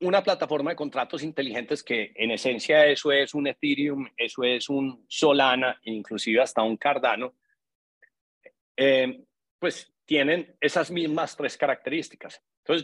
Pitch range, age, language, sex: 130-165 Hz, 40-59, Spanish, male